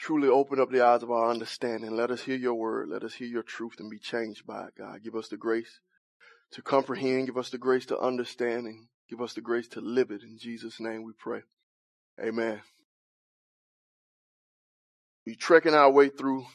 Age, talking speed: 20-39, 200 wpm